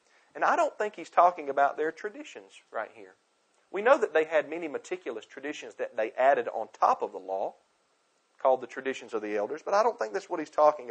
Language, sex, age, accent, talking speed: English, male, 40-59, American, 225 wpm